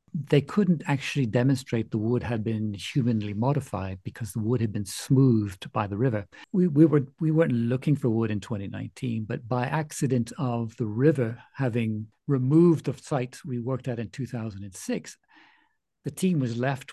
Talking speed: 170 wpm